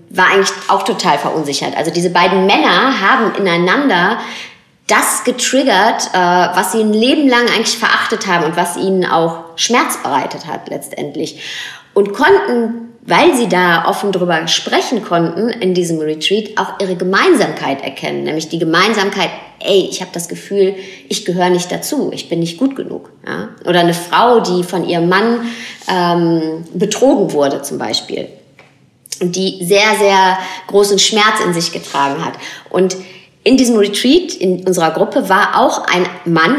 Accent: German